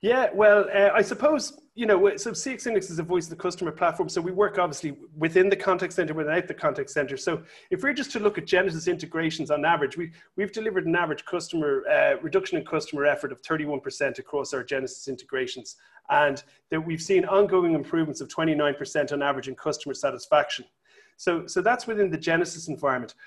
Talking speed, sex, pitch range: 200 wpm, male, 155-195 Hz